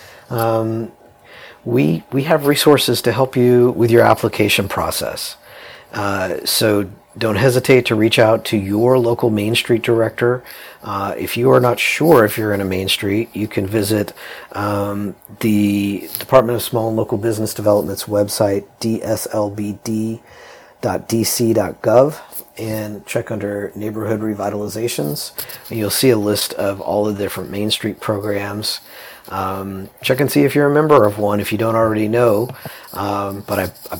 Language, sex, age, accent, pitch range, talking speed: English, male, 40-59, American, 100-120 Hz, 155 wpm